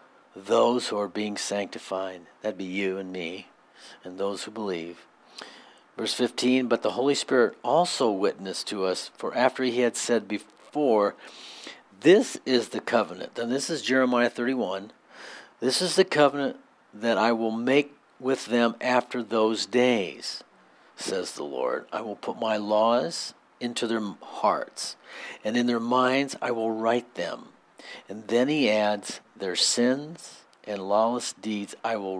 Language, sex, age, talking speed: English, male, 60-79, 155 wpm